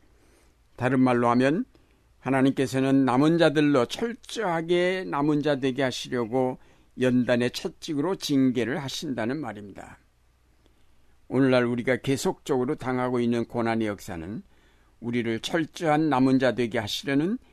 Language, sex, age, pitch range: Korean, male, 60-79, 110-150 Hz